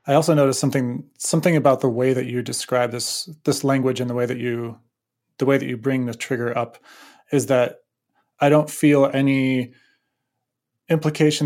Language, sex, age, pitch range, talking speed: English, male, 30-49, 120-140 Hz, 180 wpm